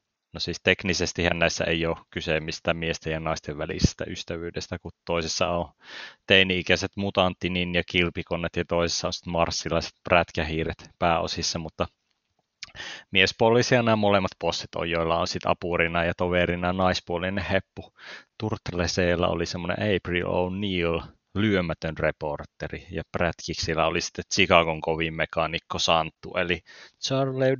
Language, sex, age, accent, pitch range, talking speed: Finnish, male, 30-49, native, 85-95 Hz, 120 wpm